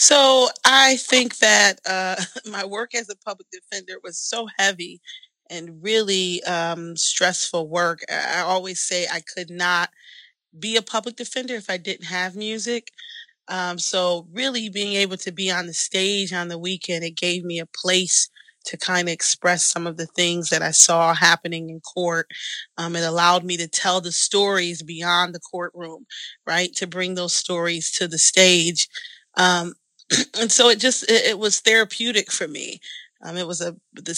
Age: 30-49